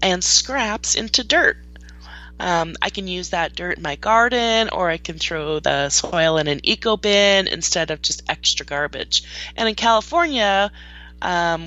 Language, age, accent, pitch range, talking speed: English, 20-39, American, 155-200 Hz, 165 wpm